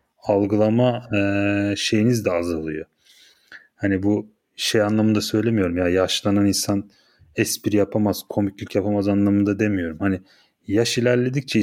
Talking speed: 115 wpm